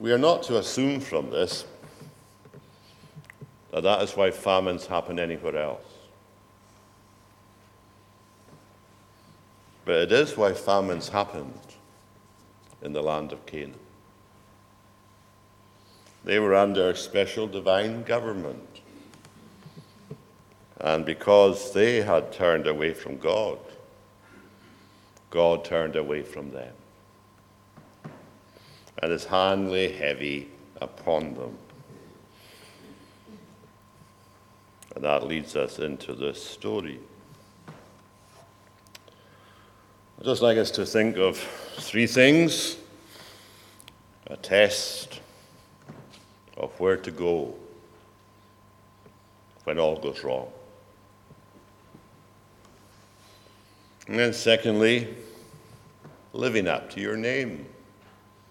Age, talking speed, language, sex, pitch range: 60-79, 90 wpm, English, male, 95-110 Hz